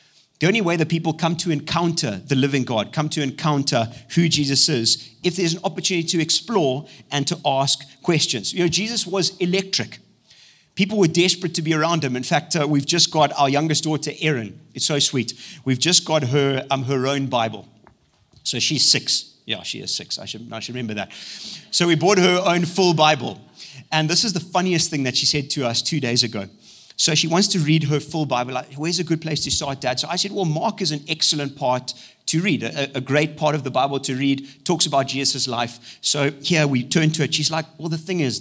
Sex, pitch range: male, 135-165 Hz